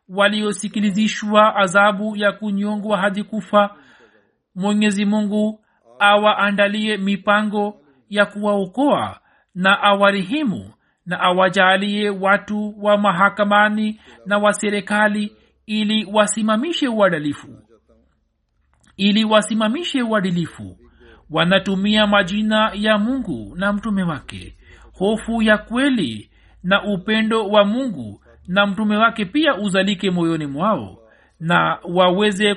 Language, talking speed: Swahili, 95 wpm